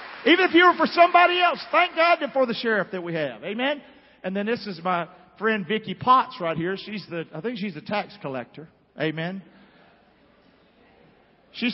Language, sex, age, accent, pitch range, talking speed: English, male, 50-69, American, 150-195 Hz, 185 wpm